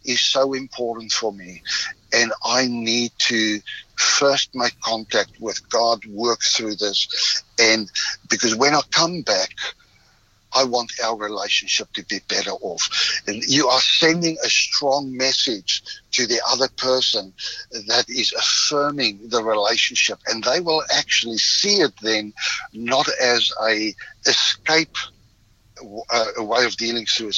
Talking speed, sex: 140 wpm, male